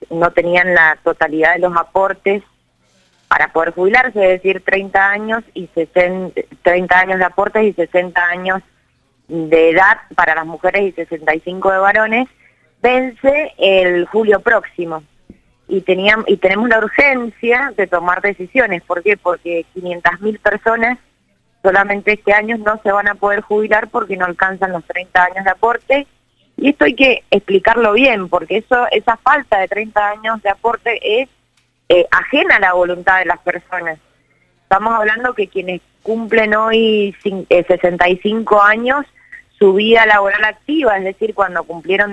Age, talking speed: 20-39, 145 wpm